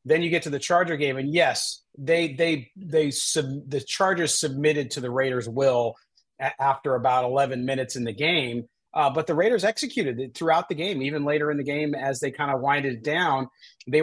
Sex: male